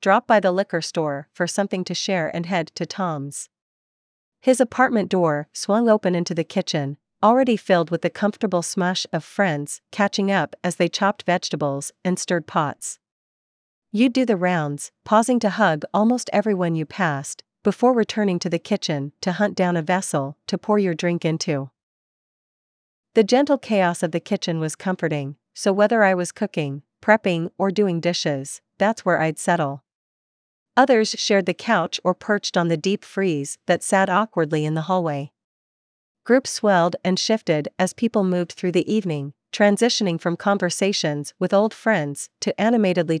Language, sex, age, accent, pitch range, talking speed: English, female, 40-59, American, 160-205 Hz, 165 wpm